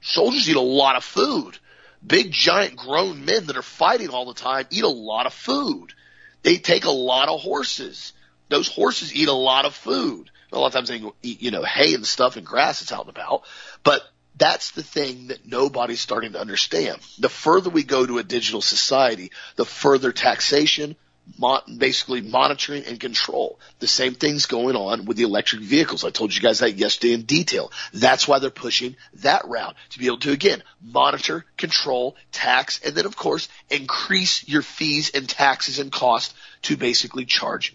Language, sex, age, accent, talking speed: English, male, 40-59, American, 190 wpm